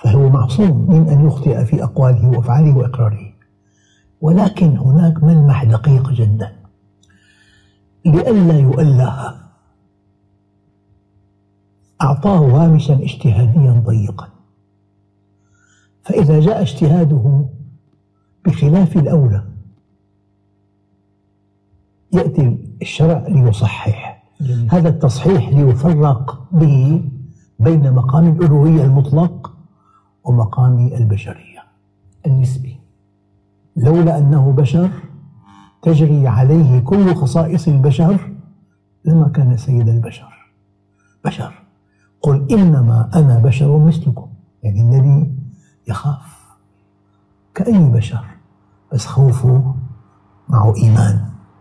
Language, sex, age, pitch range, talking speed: Arabic, male, 60-79, 100-150 Hz, 75 wpm